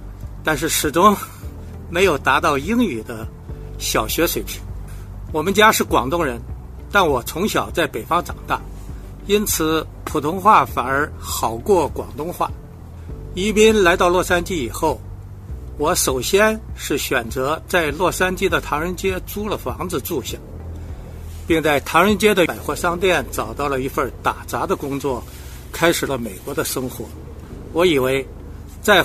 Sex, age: male, 60-79